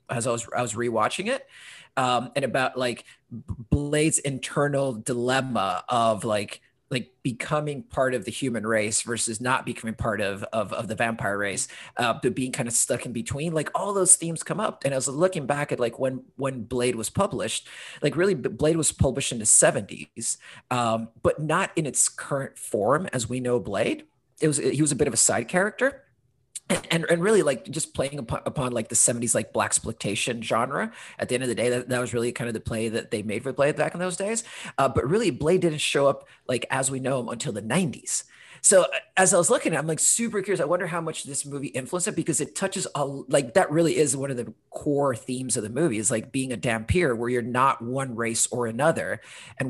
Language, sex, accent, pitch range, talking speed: English, male, American, 120-150 Hz, 230 wpm